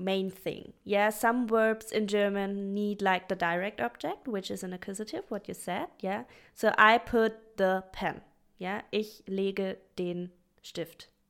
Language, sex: English, female